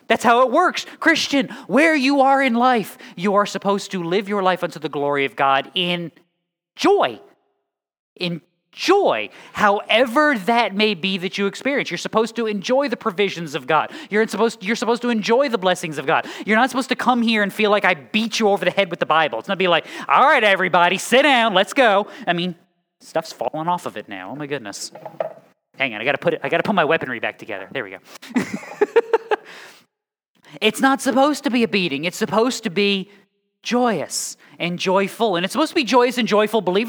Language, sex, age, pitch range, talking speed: English, male, 30-49, 175-240 Hz, 205 wpm